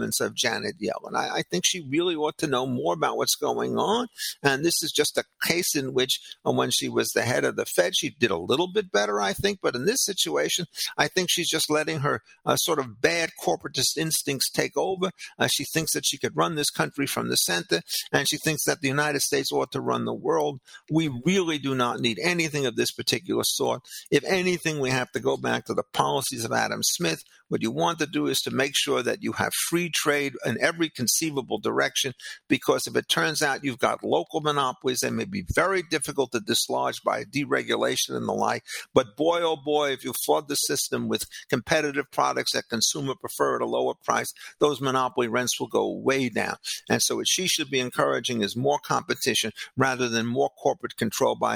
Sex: male